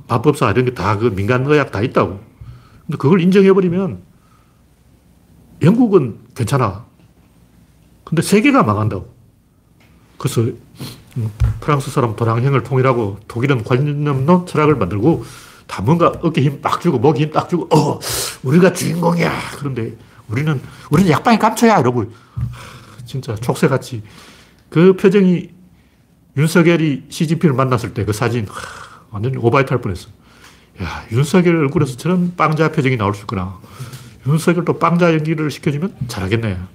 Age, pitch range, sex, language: 40-59, 115-155 Hz, male, Korean